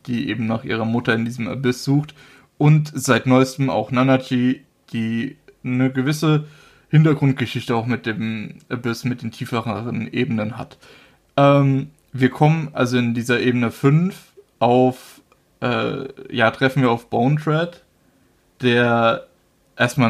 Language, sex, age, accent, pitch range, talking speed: German, male, 20-39, German, 115-135 Hz, 135 wpm